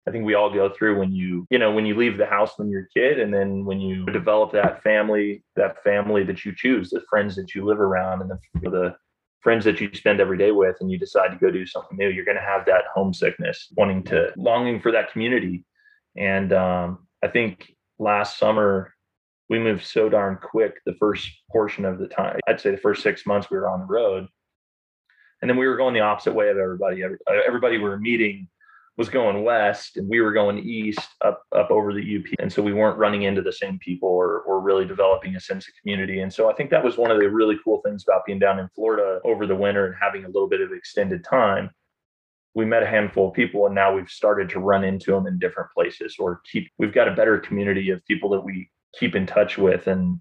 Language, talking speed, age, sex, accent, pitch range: English, 240 wpm, 20-39, male, American, 95-110 Hz